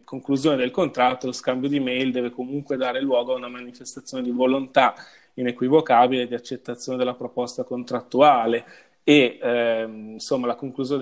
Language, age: Italian, 20-39